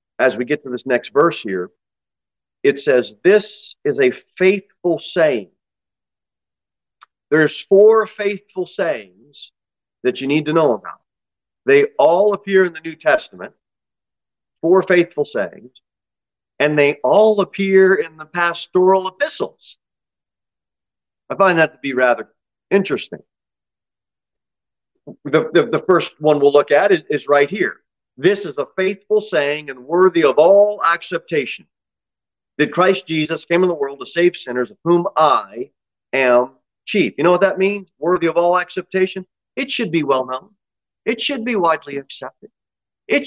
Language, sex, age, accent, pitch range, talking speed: English, male, 40-59, American, 145-205 Hz, 150 wpm